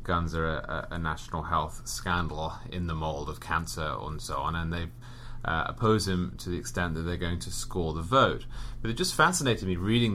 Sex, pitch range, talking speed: male, 85-115 Hz, 205 wpm